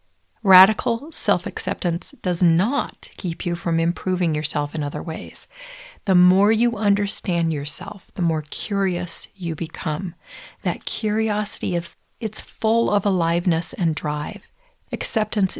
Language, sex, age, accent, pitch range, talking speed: English, female, 50-69, American, 160-205 Hz, 125 wpm